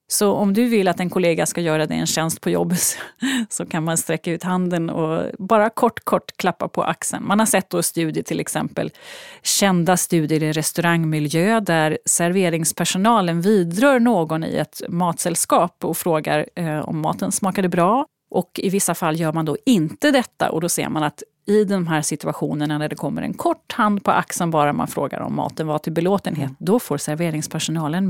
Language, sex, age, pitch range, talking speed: Swedish, female, 30-49, 160-210 Hz, 190 wpm